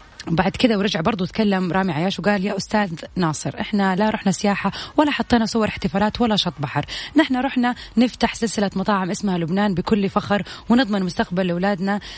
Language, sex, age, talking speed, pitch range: Arabic, female, 30-49, 165 wpm, 185-240 Hz